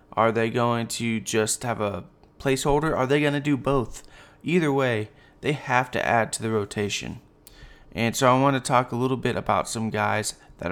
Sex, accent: male, American